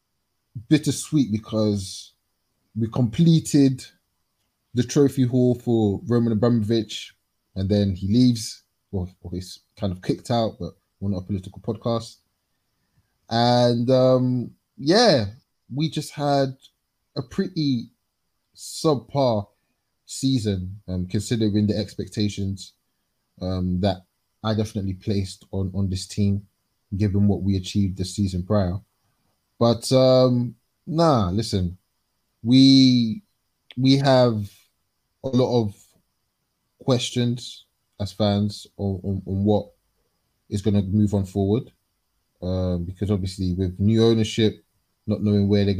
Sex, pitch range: male, 95-120 Hz